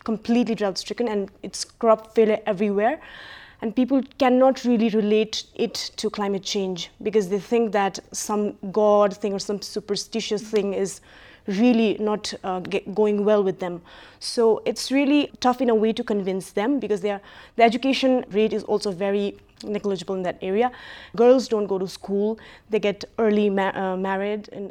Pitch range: 200-230 Hz